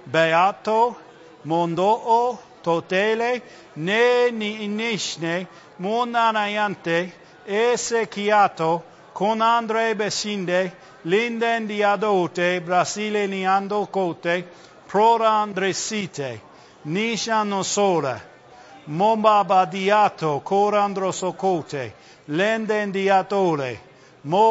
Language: English